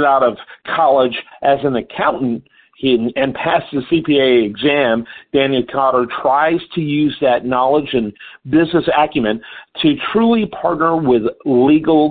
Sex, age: male, 50-69